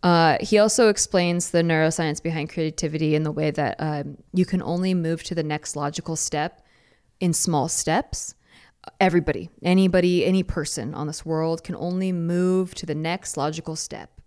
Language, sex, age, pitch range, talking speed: English, female, 20-39, 155-190 Hz, 170 wpm